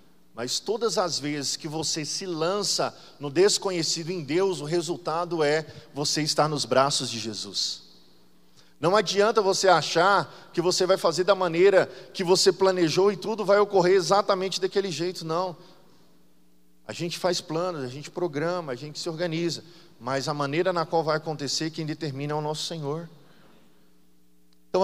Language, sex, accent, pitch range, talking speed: Portuguese, male, Brazilian, 115-185 Hz, 160 wpm